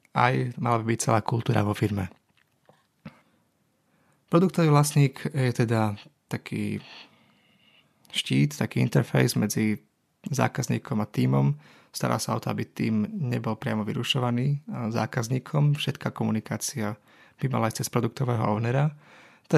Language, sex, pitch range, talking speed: Slovak, male, 110-130 Hz, 120 wpm